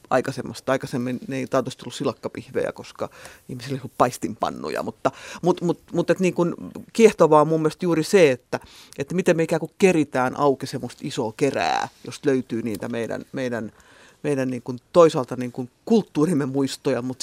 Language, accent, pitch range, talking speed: Finnish, native, 130-170 Hz, 170 wpm